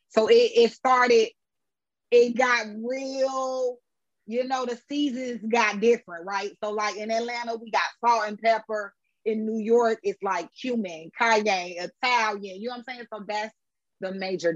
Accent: American